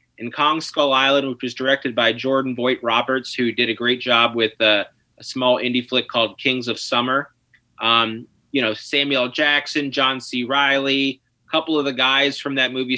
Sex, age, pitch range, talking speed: male, 30-49, 125-165 Hz, 195 wpm